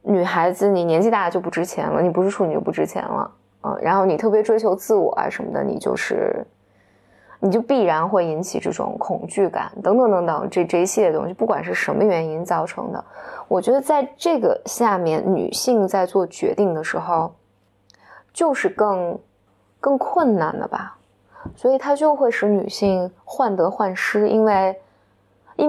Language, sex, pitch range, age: Chinese, female, 175-235 Hz, 20-39